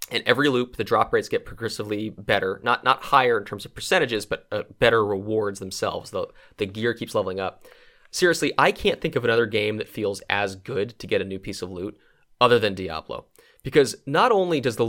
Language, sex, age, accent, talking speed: English, male, 30-49, American, 215 wpm